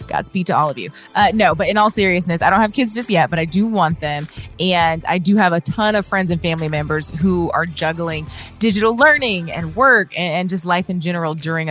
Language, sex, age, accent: English, female, 20-39, American